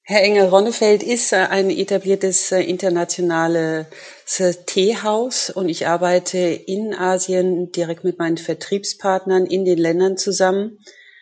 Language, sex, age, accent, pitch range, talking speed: German, female, 40-59, German, 170-195 Hz, 110 wpm